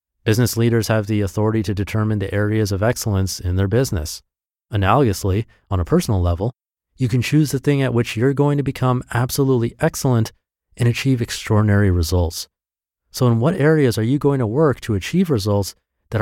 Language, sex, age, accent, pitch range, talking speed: English, male, 30-49, American, 95-125 Hz, 180 wpm